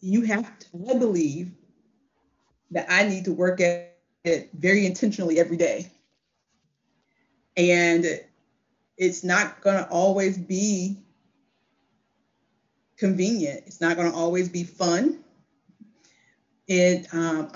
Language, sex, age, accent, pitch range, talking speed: English, female, 30-49, American, 170-195 Hz, 110 wpm